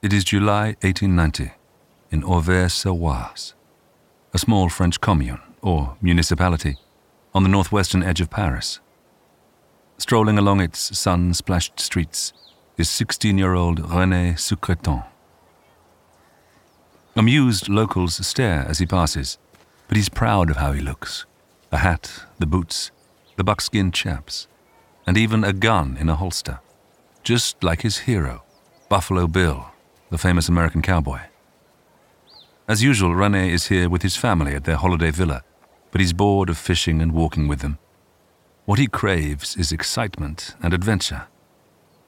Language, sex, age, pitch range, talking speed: English, male, 50-69, 80-100 Hz, 130 wpm